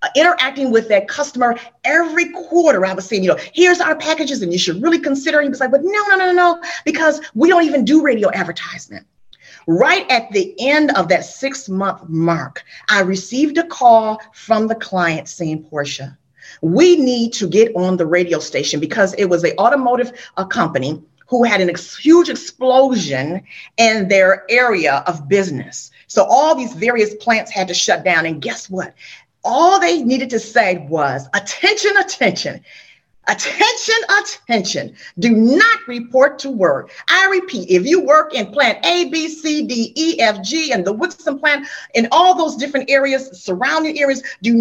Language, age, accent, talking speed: English, 40-59, American, 175 wpm